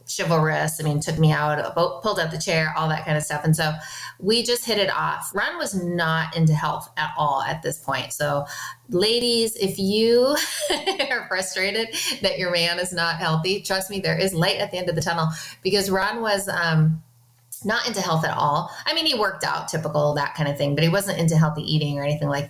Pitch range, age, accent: 155-190 Hz, 30-49, American